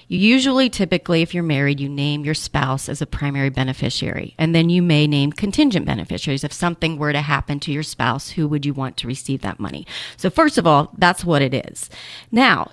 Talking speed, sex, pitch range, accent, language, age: 210 wpm, female, 165-230 Hz, American, English, 30-49